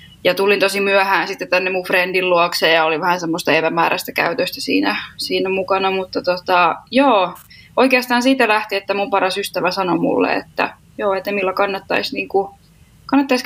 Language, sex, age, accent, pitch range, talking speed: Finnish, female, 20-39, native, 185-210 Hz, 160 wpm